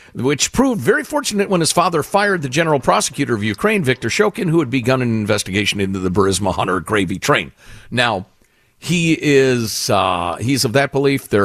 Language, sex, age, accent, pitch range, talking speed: English, male, 50-69, American, 105-170 Hz, 185 wpm